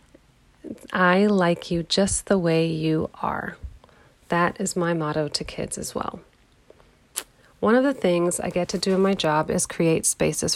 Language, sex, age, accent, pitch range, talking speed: English, female, 30-49, American, 165-200 Hz, 170 wpm